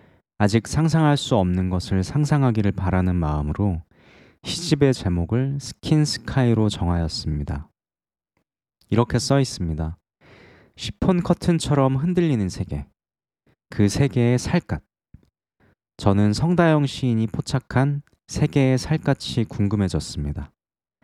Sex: male